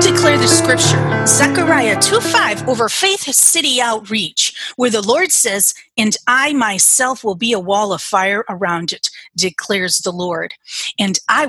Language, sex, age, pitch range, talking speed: English, female, 30-49, 195-265 Hz, 155 wpm